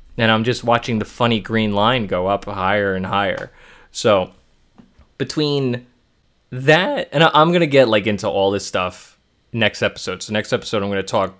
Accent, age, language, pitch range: American, 20-39, English, 95-115 Hz